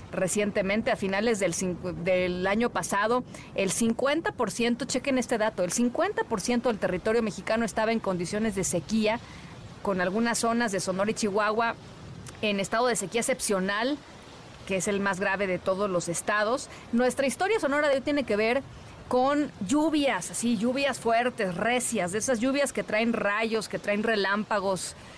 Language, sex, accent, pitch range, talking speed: Spanish, female, Mexican, 185-240 Hz, 155 wpm